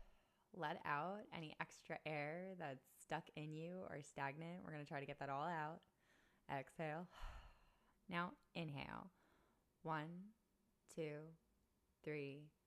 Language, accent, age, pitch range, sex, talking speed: English, American, 20-39, 140-170 Hz, female, 125 wpm